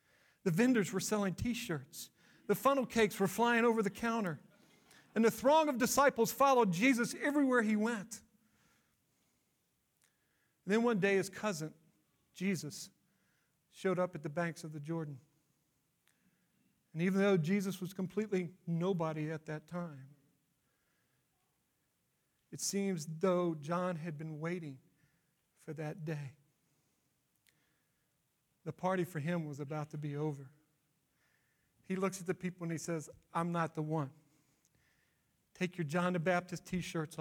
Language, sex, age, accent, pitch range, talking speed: English, male, 50-69, American, 155-195 Hz, 135 wpm